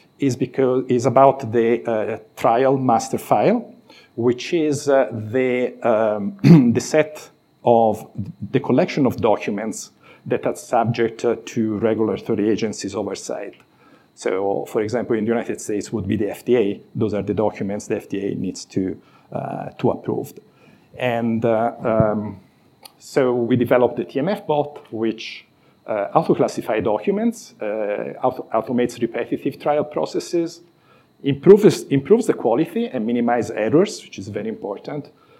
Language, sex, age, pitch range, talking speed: English, male, 50-69, 115-140 Hz, 135 wpm